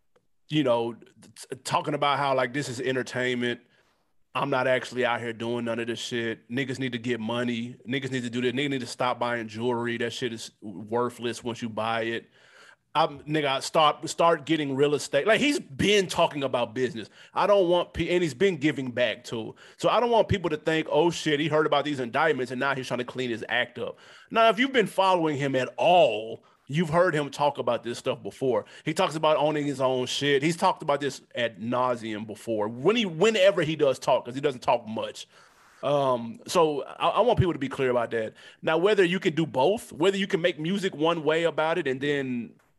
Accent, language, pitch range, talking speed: American, English, 125-165 Hz, 220 wpm